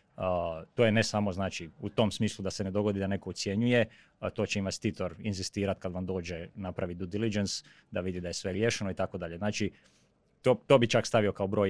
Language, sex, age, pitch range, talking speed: Croatian, male, 30-49, 100-120 Hz, 210 wpm